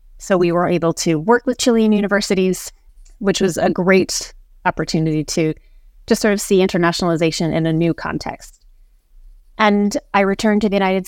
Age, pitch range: 30-49, 170-205 Hz